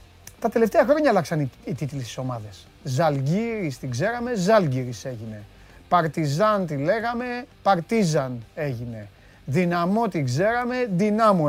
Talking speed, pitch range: 115 wpm, 140-200 Hz